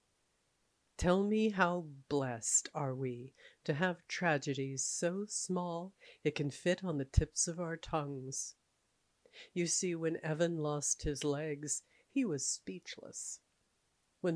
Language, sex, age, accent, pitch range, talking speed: English, female, 50-69, American, 150-195 Hz, 130 wpm